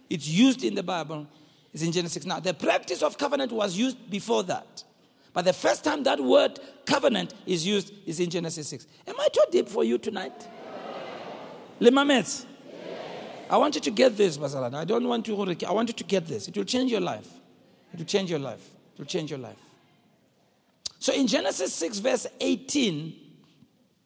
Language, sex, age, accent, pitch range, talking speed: English, male, 60-79, South African, 175-250 Hz, 190 wpm